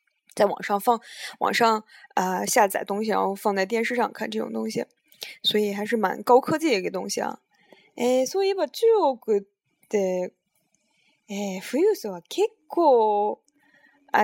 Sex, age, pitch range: female, 20-39, 195-250 Hz